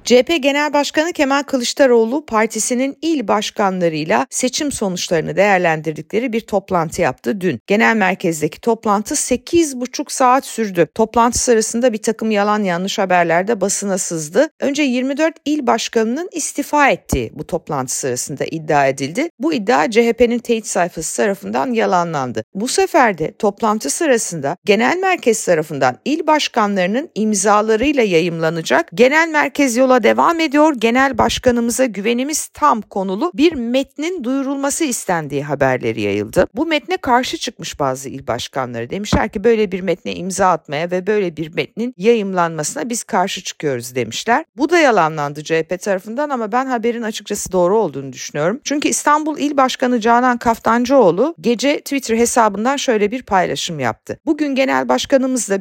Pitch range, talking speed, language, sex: 175-265 Hz, 135 wpm, Turkish, female